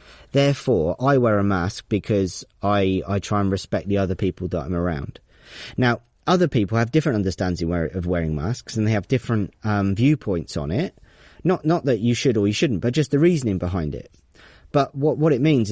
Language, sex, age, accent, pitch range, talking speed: English, male, 40-59, British, 100-130 Hz, 200 wpm